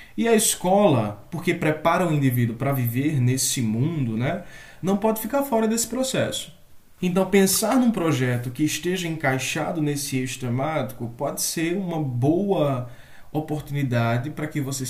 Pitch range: 125-165 Hz